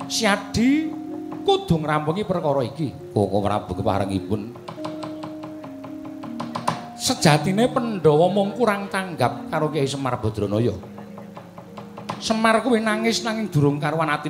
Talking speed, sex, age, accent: 95 wpm, male, 50-69, native